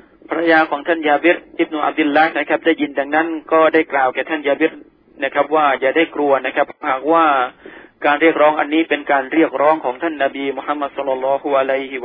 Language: Thai